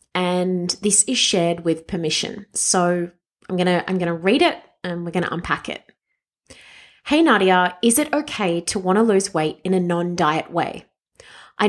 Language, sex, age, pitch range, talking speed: English, female, 30-49, 180-225 Hz, 175 wpm